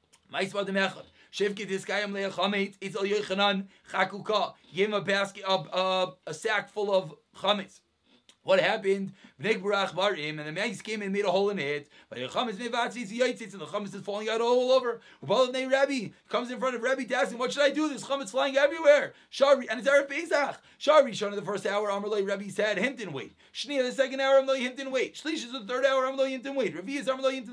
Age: 30-49